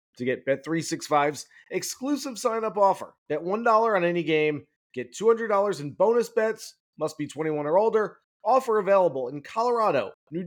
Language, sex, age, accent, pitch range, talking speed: English, male, 30-49, American, 155-200 Hz, 150 wpm